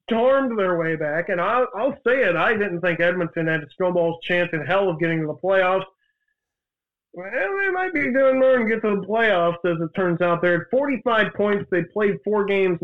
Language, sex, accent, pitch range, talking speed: English, male, American, 165-200 Hz, 220 wpm